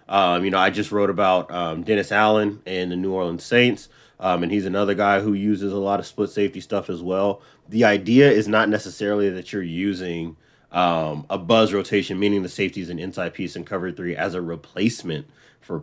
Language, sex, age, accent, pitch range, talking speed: English, male, 30-49, American, 95-110 Hz, 210 wpm